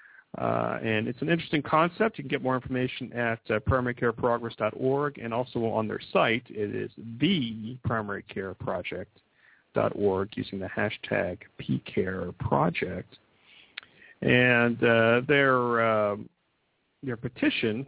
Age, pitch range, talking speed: 40-59, 115-145 Hz, 105 wpm